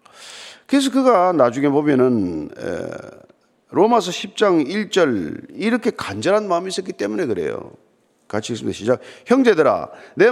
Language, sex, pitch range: Korean, male, 155-250 Hz